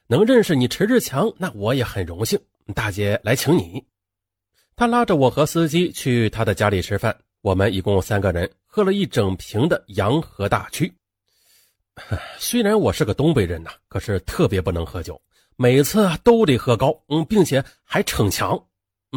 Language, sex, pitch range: Chinese, male, 100-160 Hz